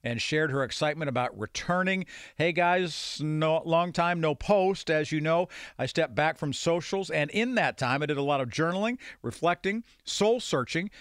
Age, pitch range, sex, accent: 50-69, 130-165 Hz, male, American